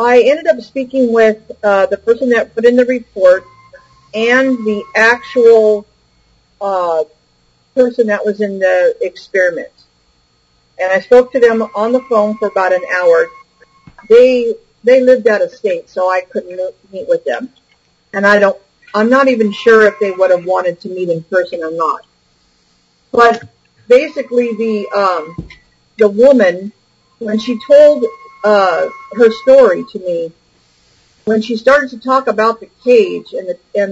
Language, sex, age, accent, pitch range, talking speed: English, female, 50-69, American, 185-260 Hz, 160 wpm